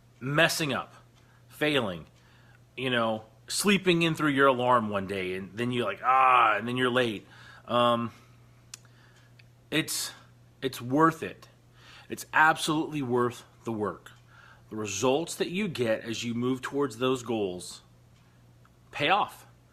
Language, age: English, 40-59